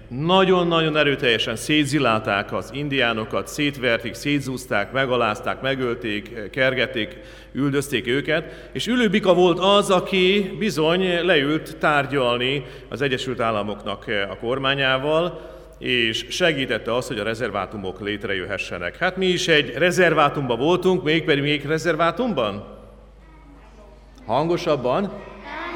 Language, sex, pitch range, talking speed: Hungarian, male, 115-165 Hz, 100 wpm